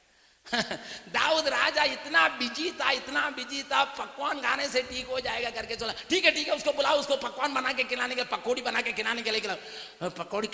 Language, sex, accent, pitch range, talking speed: Hindi, male, native, 190-240 Hz, 200 wpm